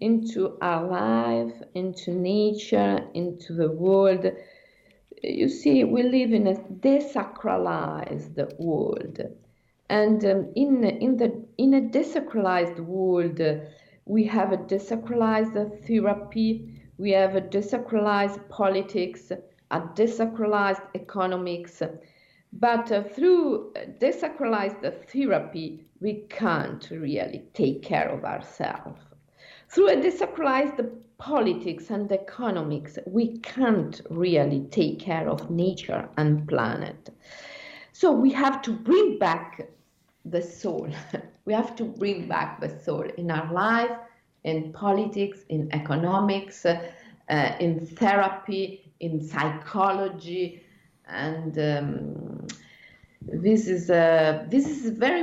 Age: 50-69